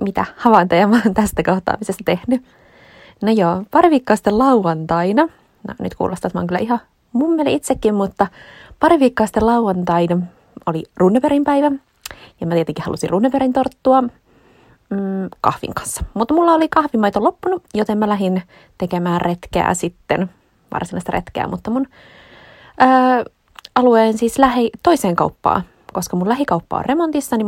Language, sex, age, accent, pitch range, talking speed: Finnish, female, 20-39, native, 185-265 Hz, 145 wpm